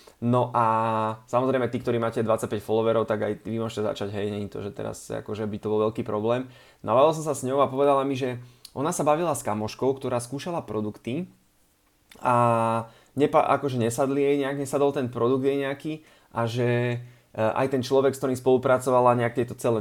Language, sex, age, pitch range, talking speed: Slovak, male, 20-39, 110-135 Hz, 195 wpm